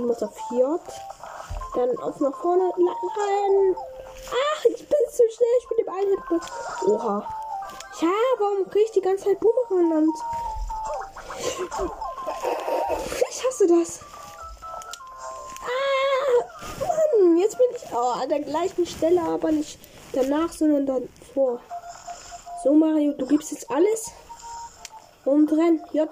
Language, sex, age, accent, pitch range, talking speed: German, female, 10-29, German, 300-435 Hz, 130 wpm